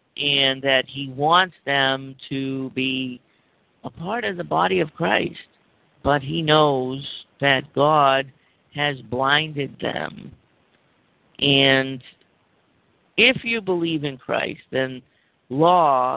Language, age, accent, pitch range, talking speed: English, 50-69, American, 130-160 Hz, 110 wpm